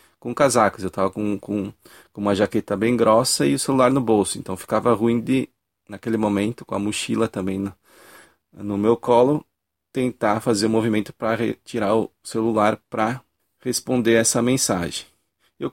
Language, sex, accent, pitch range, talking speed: Portuguese, male, Brazilian, 105-125 Hz, 165 wpm